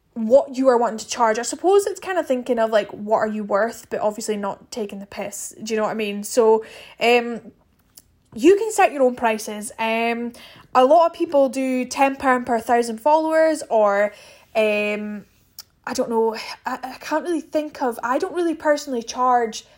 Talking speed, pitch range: 195 wpm, 225-270 Hz